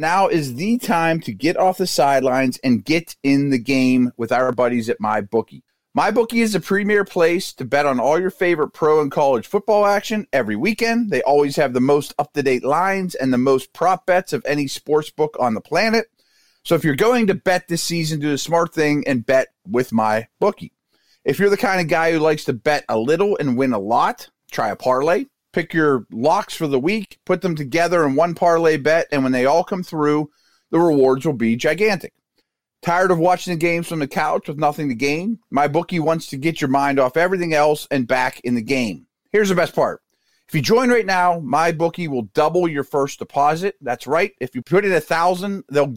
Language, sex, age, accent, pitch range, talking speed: English, male, 30-49, American, 140-185 Hz, 215 wpm